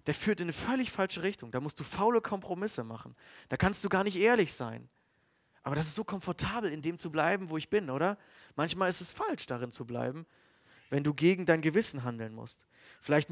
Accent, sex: German, male